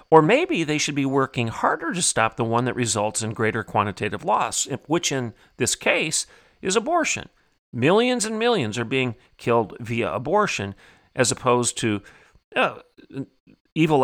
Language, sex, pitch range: English, male, 110-140 Hz